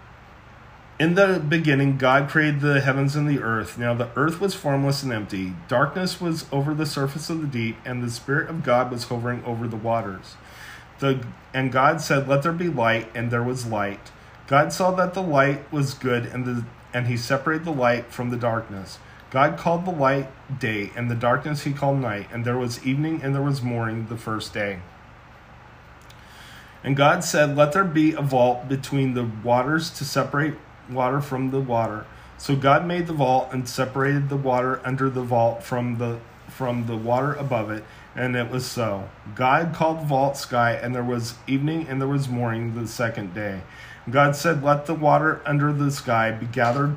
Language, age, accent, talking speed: English, 40-59, American, 195 wpm